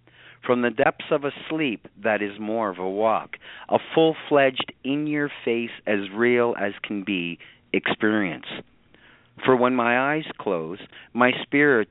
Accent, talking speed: American, 115 wpm